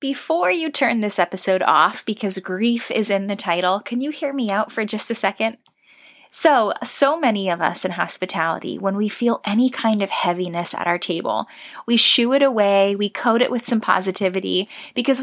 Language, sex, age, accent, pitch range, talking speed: English, female, 10-29, American, 190-240 Hz, 195 wpm